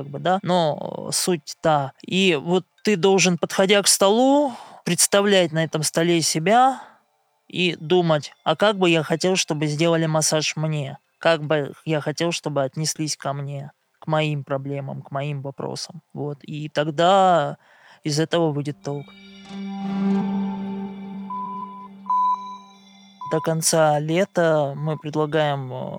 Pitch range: 145-175 Hz